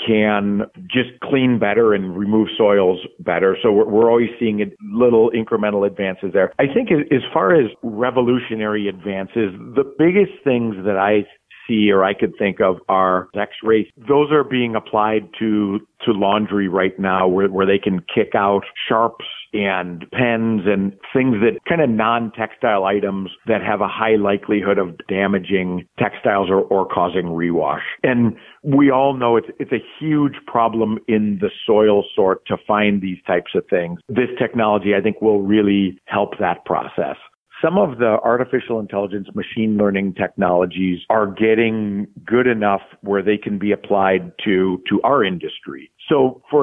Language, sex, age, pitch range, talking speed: English, male, 50-69, 100-120 Hz, 160 wpm